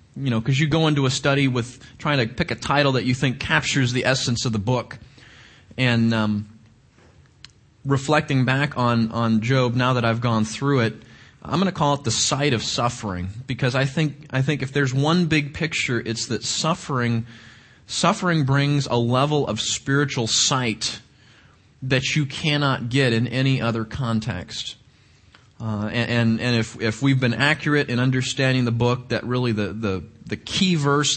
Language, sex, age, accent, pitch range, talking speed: English, male, 30-49, American, 110-135 Hz, 180 wpm